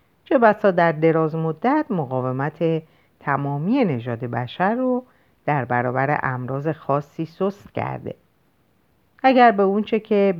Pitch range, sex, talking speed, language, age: 130-205 Hz, female, 115 wpm, Persian, 50-69